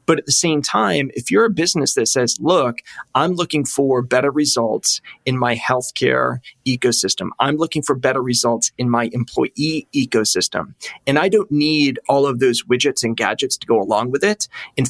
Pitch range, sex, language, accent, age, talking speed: 120-155 Hz, male, English, American, 30-49, 185 wpm